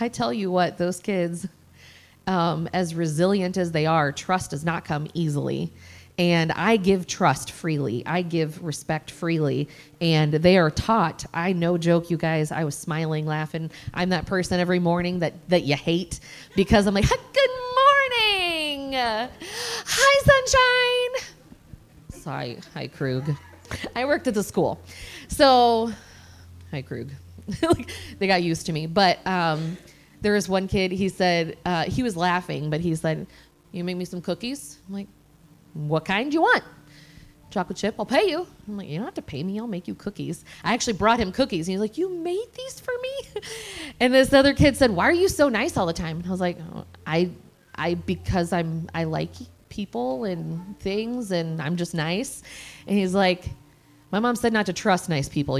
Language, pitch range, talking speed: English, 160-220 Hz, 185 wpm